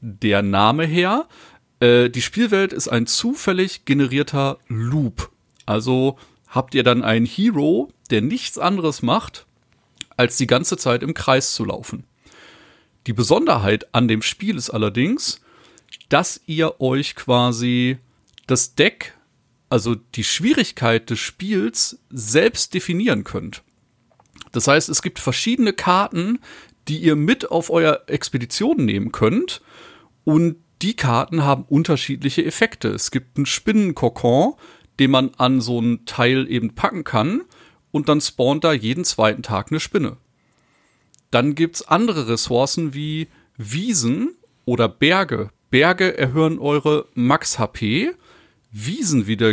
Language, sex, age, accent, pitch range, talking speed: German, male, 40-59, German, 120-185 Hz, 130 wpm